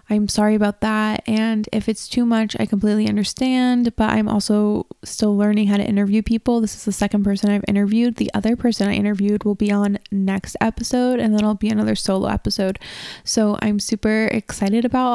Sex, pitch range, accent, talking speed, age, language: female, 200-225 Hz, American, 200 wpm, 20-39, English